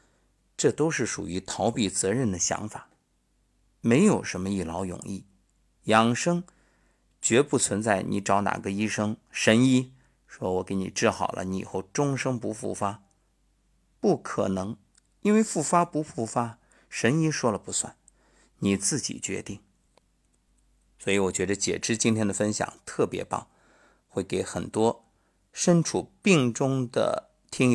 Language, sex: Chinese, male